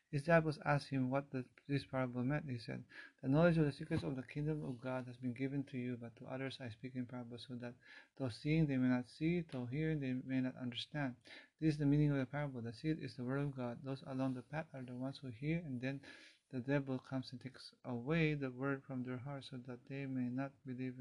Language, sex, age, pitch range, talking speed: English, male, 30-49, 125-150 Hz, 250 wpm